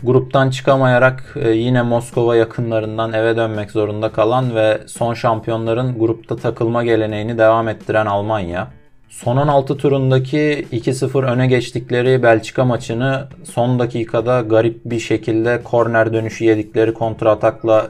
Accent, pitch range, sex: native, 115-135 Hz, male